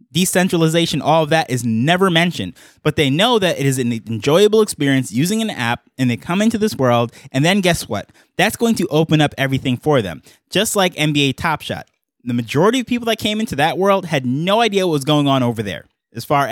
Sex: male